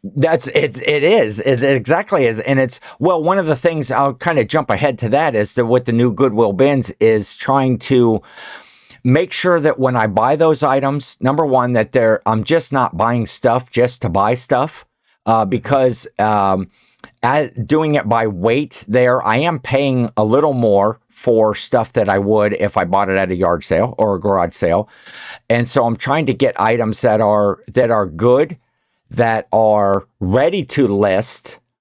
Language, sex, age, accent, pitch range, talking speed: English, male, 50-69, American, 110-135 Hz, 190 wpm